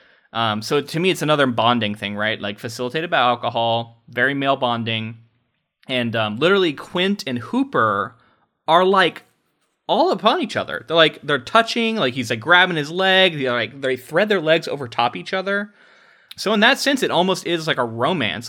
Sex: male